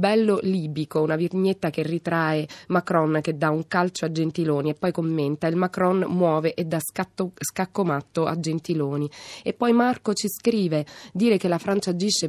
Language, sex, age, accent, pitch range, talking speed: Italian, female, 20-39, native, 160-205 Hz, 175 wpm